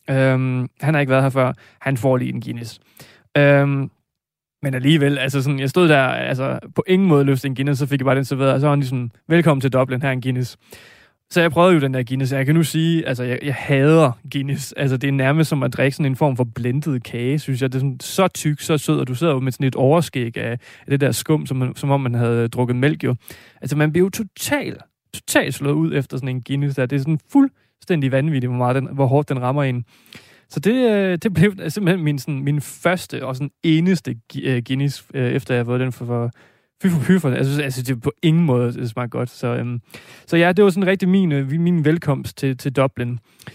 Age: 20-39